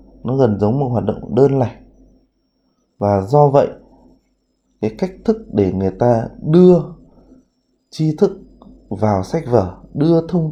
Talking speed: 145 wpm